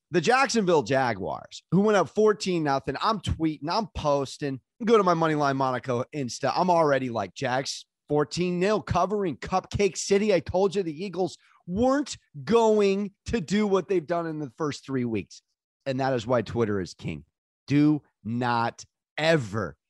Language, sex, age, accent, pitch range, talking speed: English, male, 30-49, American, 130-190 Hz, 155 wpm